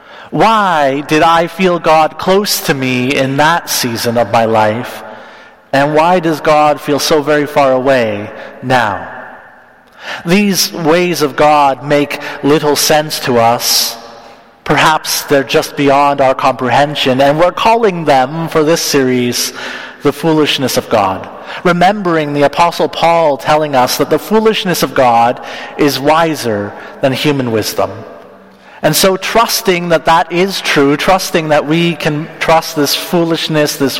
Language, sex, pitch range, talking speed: English, male, 130-160 Hz, 145 wpm